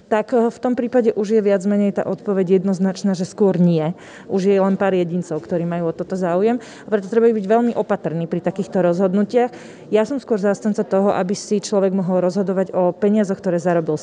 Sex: female